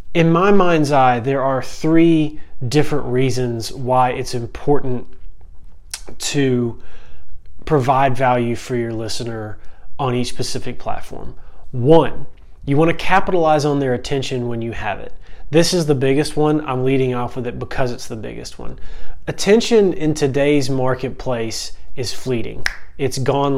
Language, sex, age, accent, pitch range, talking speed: English, male, 30-49, American, 125-150 Hz, 145 wpm